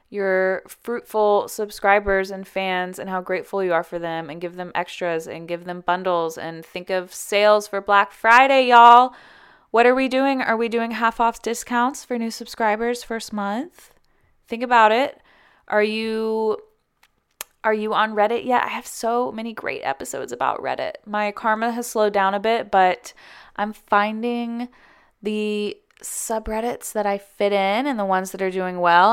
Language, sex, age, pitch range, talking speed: English, female, 20-39, 185-230 Hz, 170 wpm